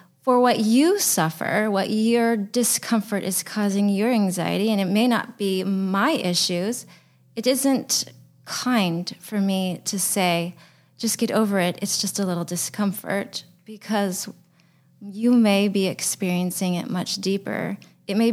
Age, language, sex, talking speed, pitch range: 20-39, English, female, 145 wpm, 180-215 Hz